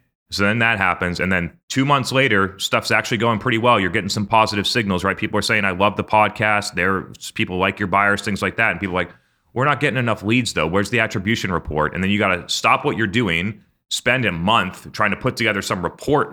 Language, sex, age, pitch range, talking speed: English, male, 30-49, 90-110 Hz, 245 wpm